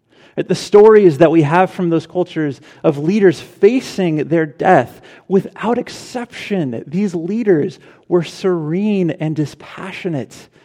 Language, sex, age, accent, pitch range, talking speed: English, male, 30-49, American, 145-190 Hz, 120 wpm